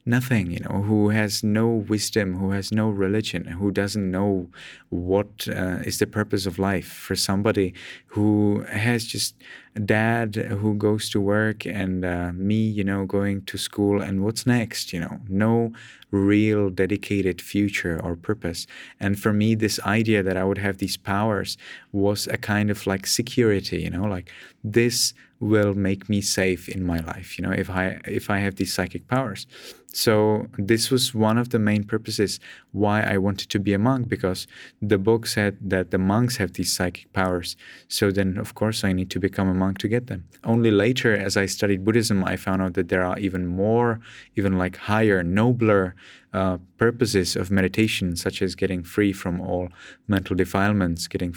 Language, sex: English, male